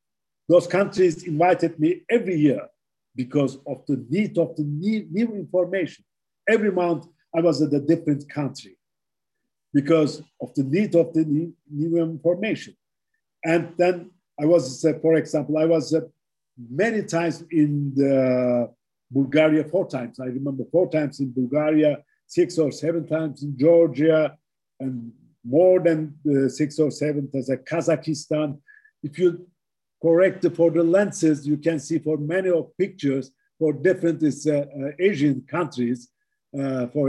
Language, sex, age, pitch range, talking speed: English, male, 50-69, 135-165 Hz, 145 wpm